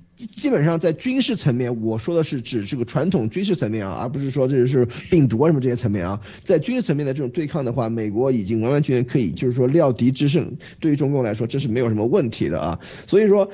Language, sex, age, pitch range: Chinese, male, 20-39, 135-200 Hz